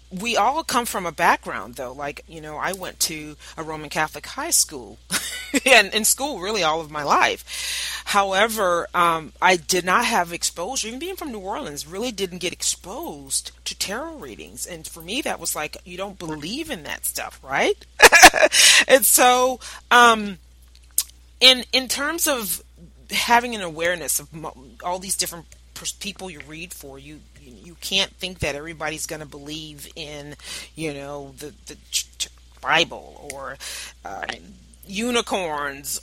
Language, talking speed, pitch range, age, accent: English, 160 wpm, 150-220 Hz, 30-49, American